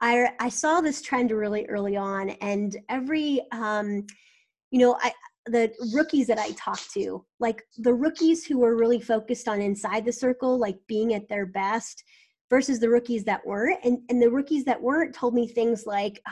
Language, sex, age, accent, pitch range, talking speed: English, female, 20-39, American, 220-270 Hz, 185 wpm